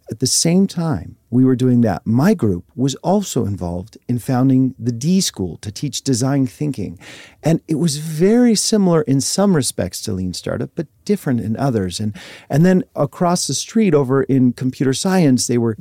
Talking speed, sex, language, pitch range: 185 wpm, male, English, 110-160 Hz